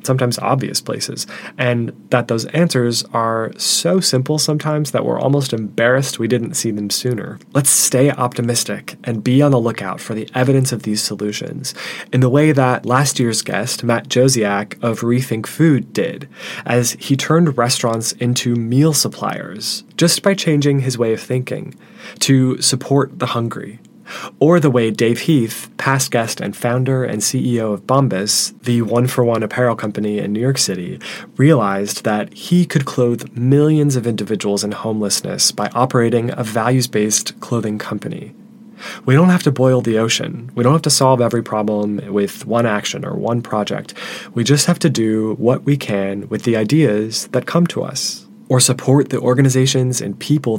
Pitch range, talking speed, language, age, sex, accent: 115-140 Hz, 170 wpm, English, 20-39, male, American